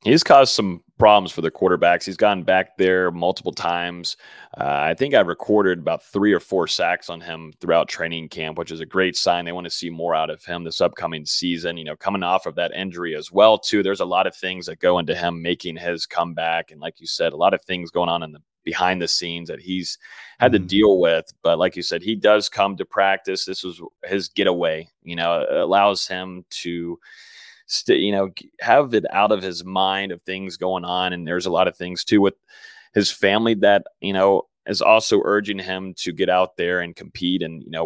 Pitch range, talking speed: 85-100 Hz, 230 wpm